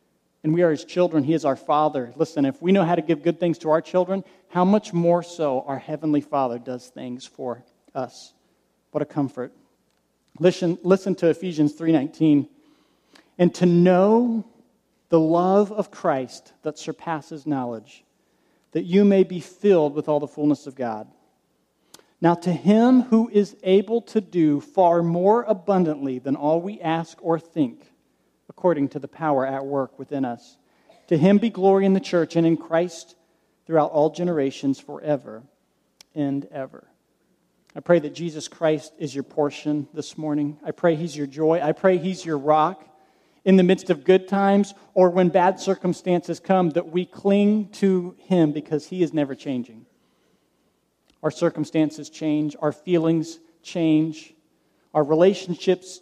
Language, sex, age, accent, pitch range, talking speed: English, male, 40-59, American, 150-185 Hz, 160 wpm